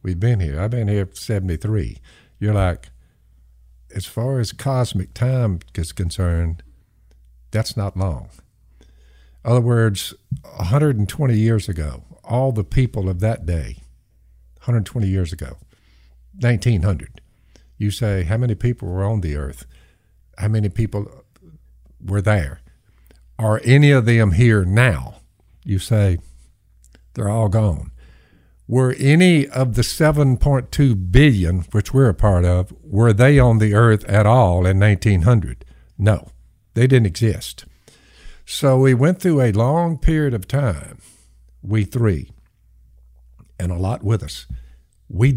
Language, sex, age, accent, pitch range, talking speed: English, male, 60-79, American, 75-125 Hz, 135 wpm